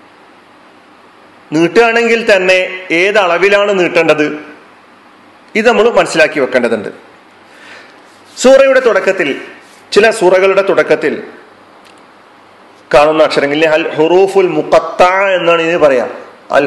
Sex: male